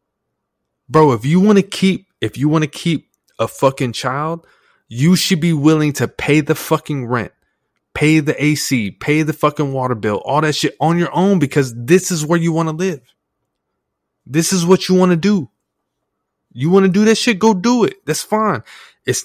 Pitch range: 110-155 Hz